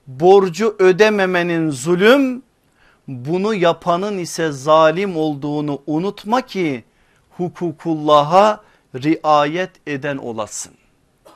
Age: 50-69